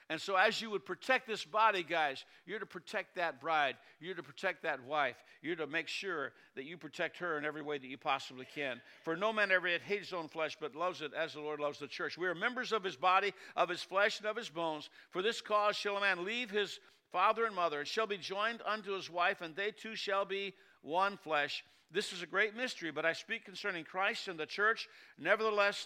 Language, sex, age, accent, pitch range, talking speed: English, male, 60-79, American, 160-205 Hz, 240 wpm